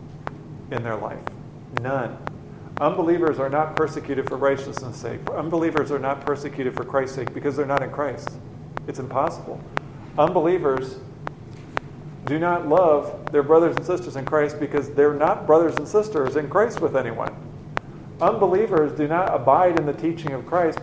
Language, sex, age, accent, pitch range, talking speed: English, male, 40-59, American, 135-155 Hz, 155 wpm